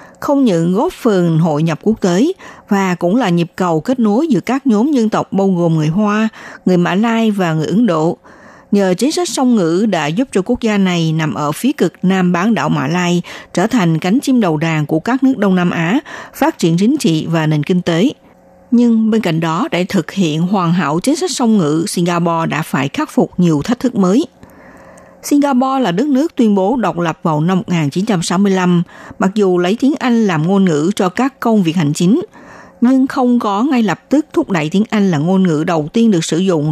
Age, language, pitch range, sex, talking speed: 60-79, Vietnamese, 170-240 Hz, female, 220 wpm